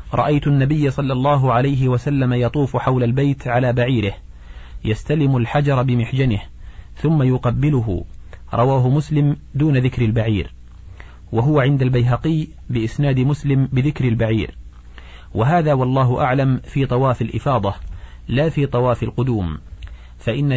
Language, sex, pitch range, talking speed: Arabic, male, 110-145 Hz, 115 wpm